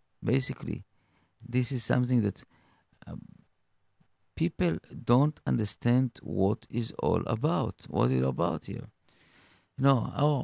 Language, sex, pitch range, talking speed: English, male, 100-125 Hz, 120 wpm